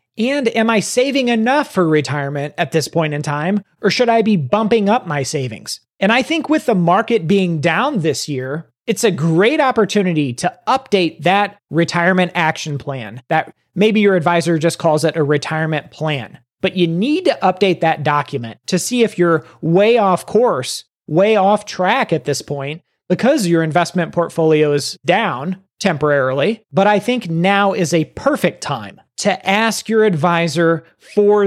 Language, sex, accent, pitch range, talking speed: English, male, American, 155-205 Hz, 170 wpm